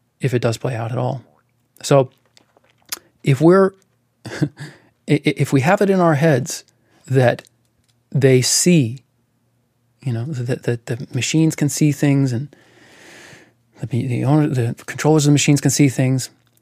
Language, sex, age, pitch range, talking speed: English, male, 30-49, 125-155 Hz, 145 wpm